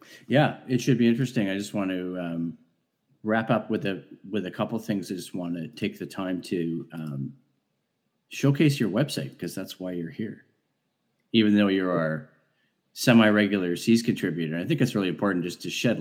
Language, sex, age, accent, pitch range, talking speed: English, male, 40-59, American, 90-125 Hz, 190 wpm